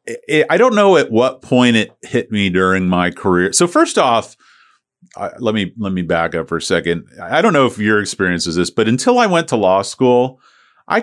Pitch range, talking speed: 90-115 Hz, 220 wpm